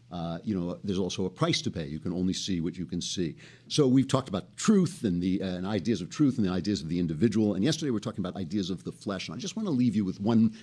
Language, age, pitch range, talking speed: English, 50-69, 85-115 Hz, 305 wpm